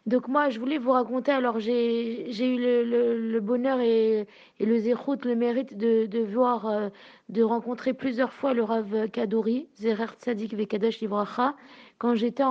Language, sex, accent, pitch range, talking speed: French, female, French, 225-255 Hz, 175 wpm